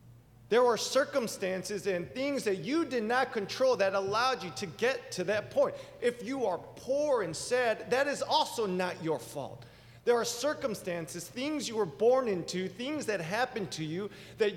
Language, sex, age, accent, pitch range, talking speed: English, male, 40-59, American, 140-225 Hz, 180 wpm